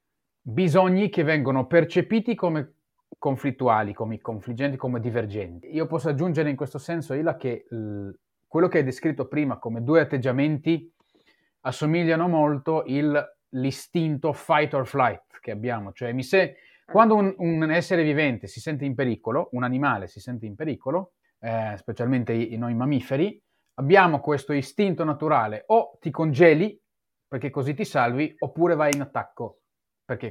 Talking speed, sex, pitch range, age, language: 140 wpm, male, 120-165 Hz, 30-49, Italian